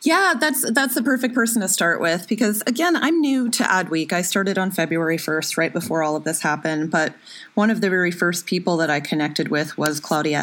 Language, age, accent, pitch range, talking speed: English, 20-39, American, 150-185 Hz, 225 wpm